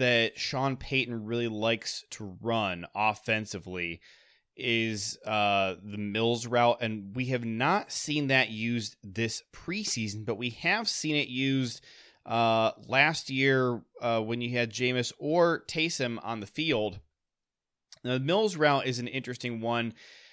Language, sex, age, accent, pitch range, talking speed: English, male, 20-39, American, 110-135 Hz, 140 wpm